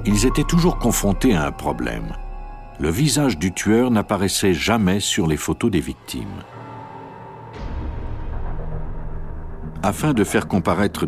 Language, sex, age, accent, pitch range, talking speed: French, male, 60-79, French, 85-120 Hz, 120 wpm